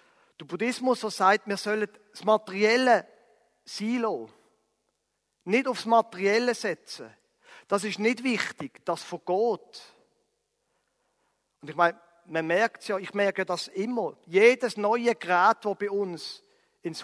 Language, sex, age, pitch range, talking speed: German, male, 40-59, 170-225 Hz, 130 wpm